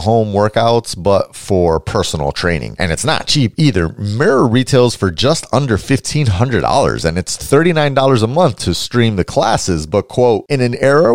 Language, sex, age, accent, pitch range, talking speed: English, male, 30-49, American, 95-130 Hz, 190 wpm